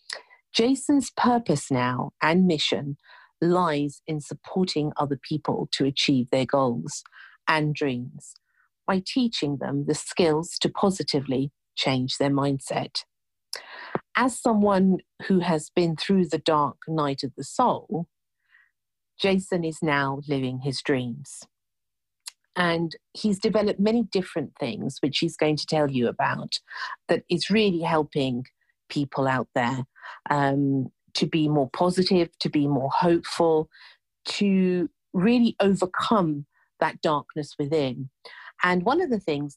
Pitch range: 140-180 Hz